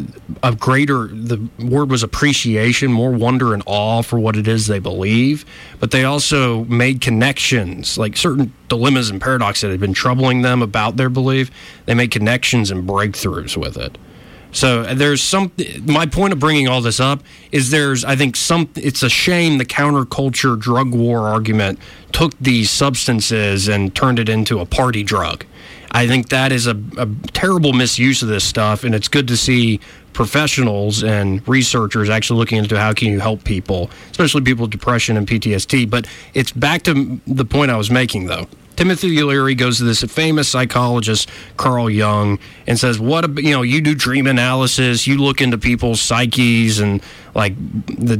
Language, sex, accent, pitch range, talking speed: English, male, American, 110-135 Hz, 180 wpm